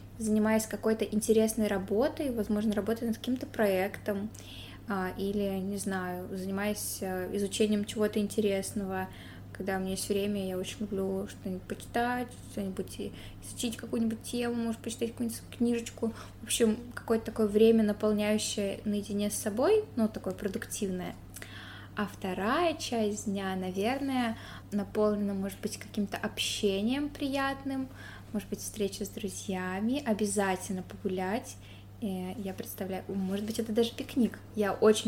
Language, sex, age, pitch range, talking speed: Russian, female, 20-39, 195-220 Hz, 125 wpm